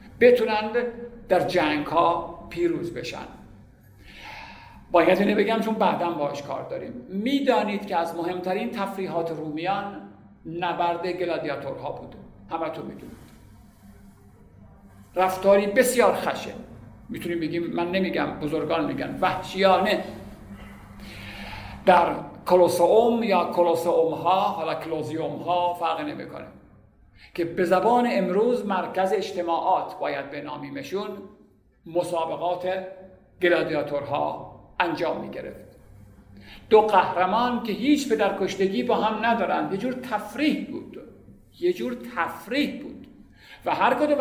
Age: 50-69